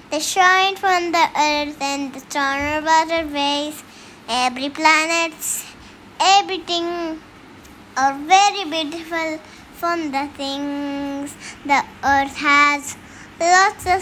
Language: Hindi